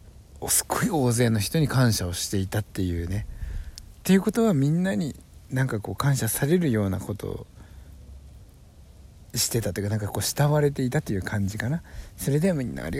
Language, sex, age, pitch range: Japanese, male, 60-79, 90-125 Hz